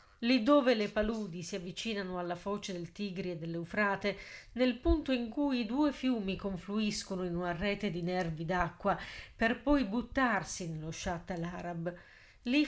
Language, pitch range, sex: Italian, 190-245 Hz, female